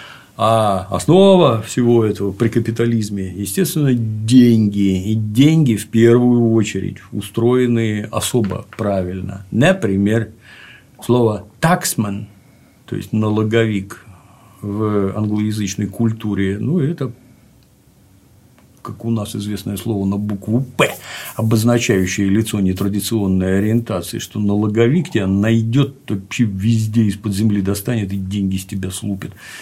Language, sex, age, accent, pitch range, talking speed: Russian, male, 50-69, native, 100-120 Hz, 105 wpm